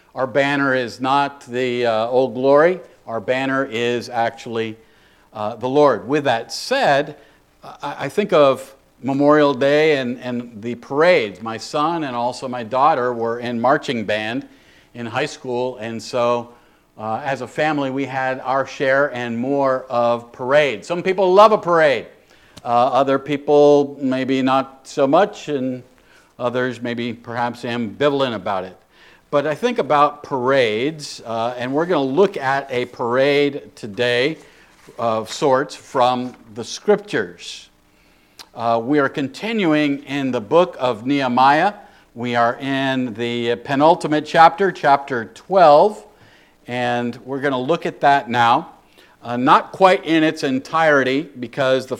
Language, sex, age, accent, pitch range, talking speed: English, male, 50-69, American, 120-145 Hz, 145 wpm